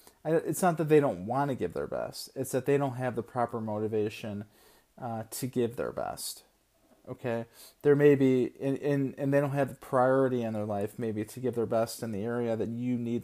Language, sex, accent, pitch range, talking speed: English, male, American, 110-135 Hz, 220 wpm